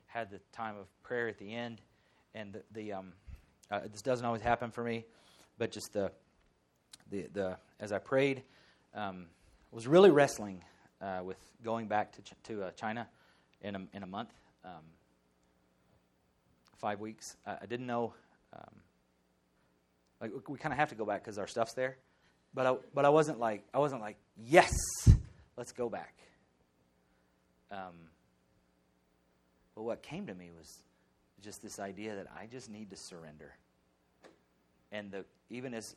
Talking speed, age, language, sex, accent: 160 wpm, 30-49, English, male, American